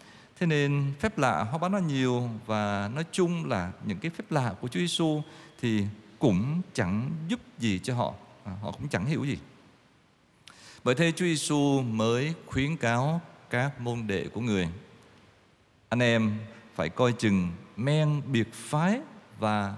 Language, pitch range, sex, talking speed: Vietnamese, 110-150 Hz, male, 160 wpm